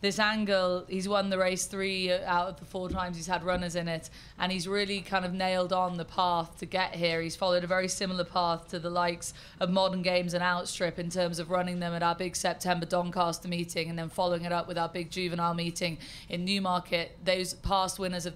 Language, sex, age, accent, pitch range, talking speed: English, female, 20-39, British, 170-185 Hz, 230 wpm